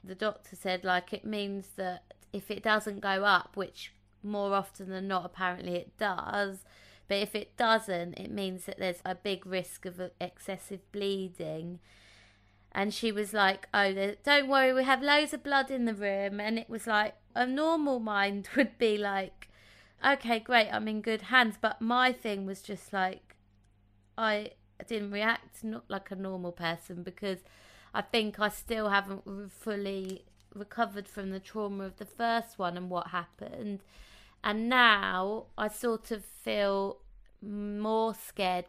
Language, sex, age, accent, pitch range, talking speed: English, female, 20-39, British, 190-220 Hz, 160 wpm